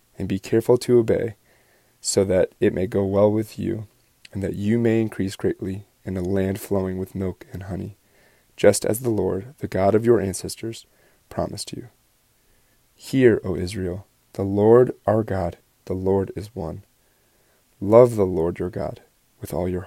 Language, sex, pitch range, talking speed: English, male, 95-115 Hz, 170 wpm